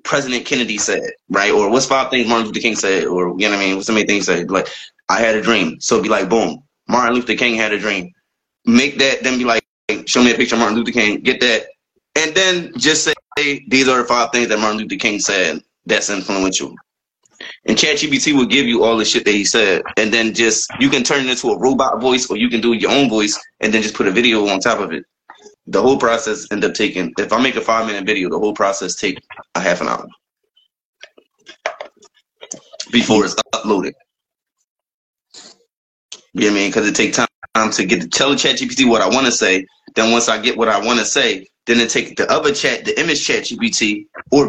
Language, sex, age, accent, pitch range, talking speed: English, male, 20-39, American, 110-135 Hz, 235 wpm